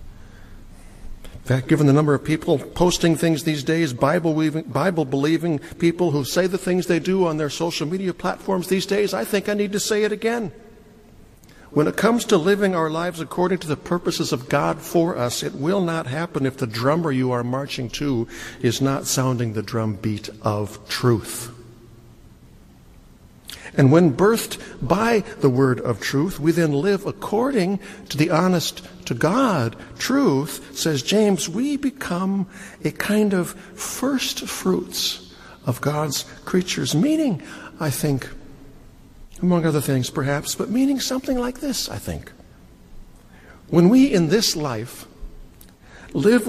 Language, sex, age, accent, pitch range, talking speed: English, male, 60-79, American, 135-190 Hz, 150 wpm